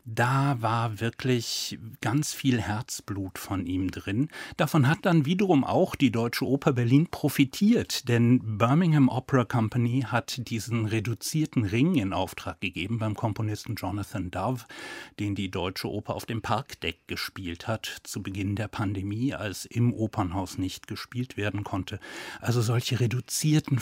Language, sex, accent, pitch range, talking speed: German, male, German, 100-125 Hz, 145 wpm